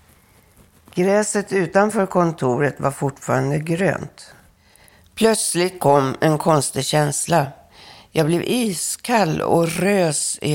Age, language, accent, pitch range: 60-79, Swedish, native, 135-180 Hz